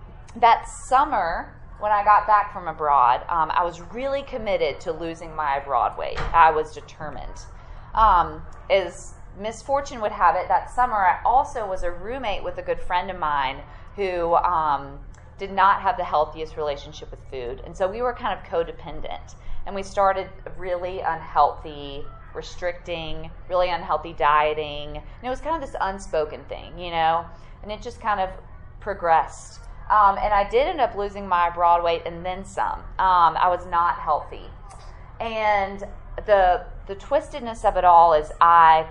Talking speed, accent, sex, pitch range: 170 wpm, American, female, 160-210 Hz